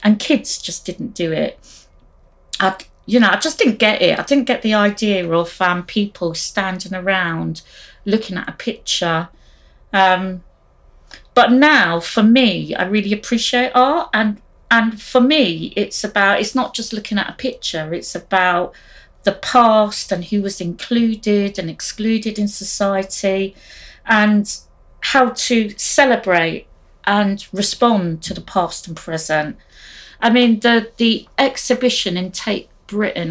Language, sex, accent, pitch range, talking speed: English, female, British, 180-230 Hz, 145 wpm